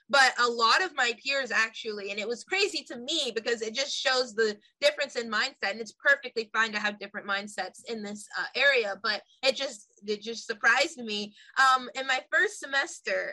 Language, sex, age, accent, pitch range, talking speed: English, female, 20-39, American, 230-290 Hz, 205 wpm